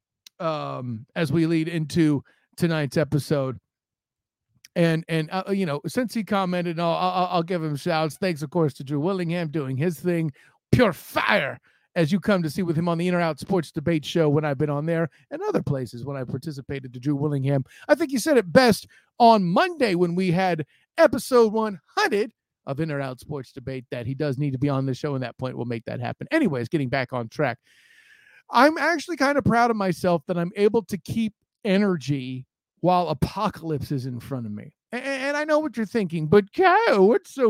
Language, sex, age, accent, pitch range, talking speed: English, male, 50-69, American, 145-230 Hz, 210 wpm